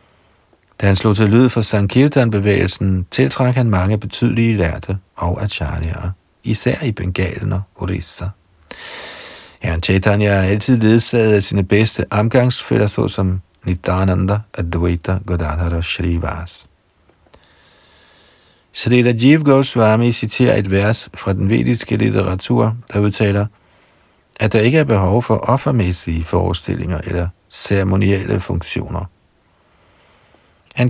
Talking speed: 115 wpm